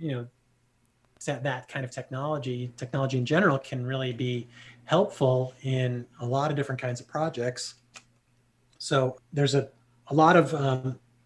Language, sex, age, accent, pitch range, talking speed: English, male, 30-49, American, 120-135 Hz, 150 wpm